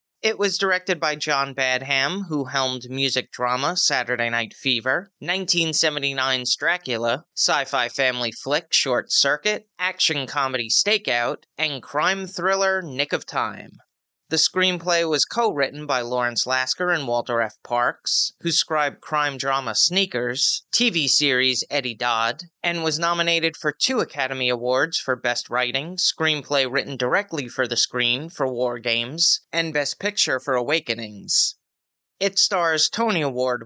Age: 30-49